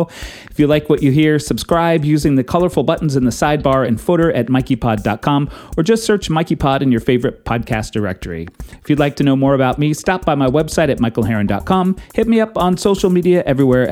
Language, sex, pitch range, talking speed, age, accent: English, male, 115-175 Hz, 205 wpm, 40-59, American